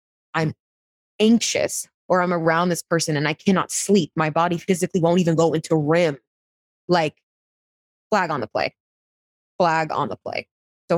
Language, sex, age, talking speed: English, female, 20-39, 160 wpm